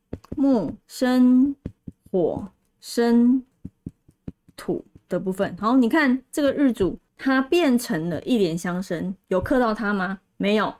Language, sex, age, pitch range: Chinese, female, 20-39, 195-260 Hz